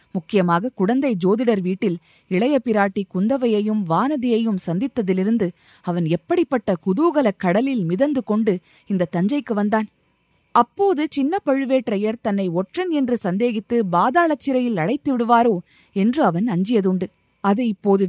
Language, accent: Tamil, native